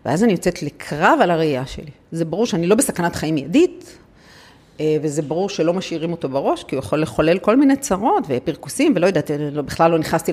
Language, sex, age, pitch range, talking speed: Hebrew, female, 50-69, 150-195 Hz, 190 wpm